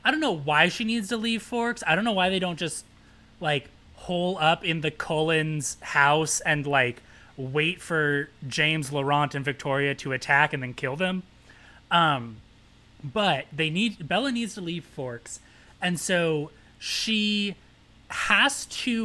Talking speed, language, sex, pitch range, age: 160 wpm, English, male, 135-185 Hz, 20-39